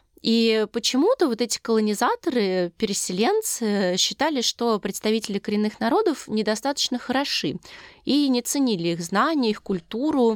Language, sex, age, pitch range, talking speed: Russian, female, 20-39, 185-235 Hz, 115 wpm